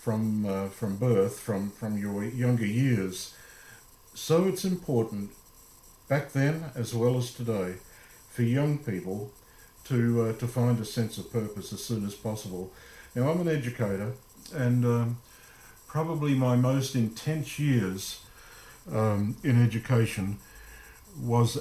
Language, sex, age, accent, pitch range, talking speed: English, male, 50-69, Australian, 100-125 Hz, 135 wpm